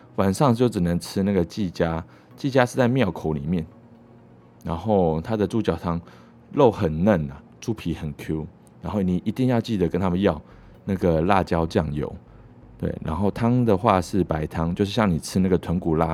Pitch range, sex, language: 80-110 Hz, male, Chinese